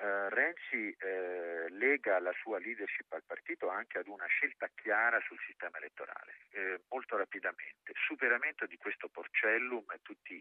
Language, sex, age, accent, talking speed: Italian, male, 50-69, native, 145 wpm